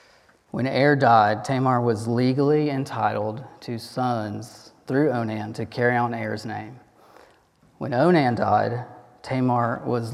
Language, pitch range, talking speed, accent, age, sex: English, 115-135 Hz, 125 wpm, American, 30-49, male